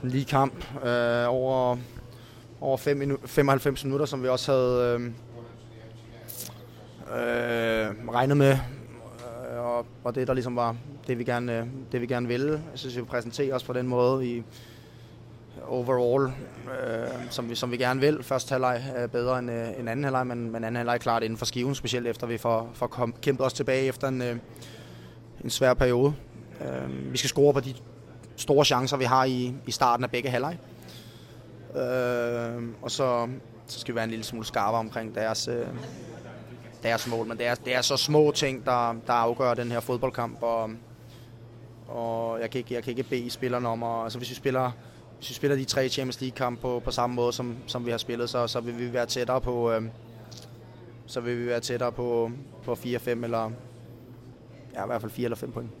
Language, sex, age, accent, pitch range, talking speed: Danish, male, 20-39, native, 115-130 Hz, 195 wpm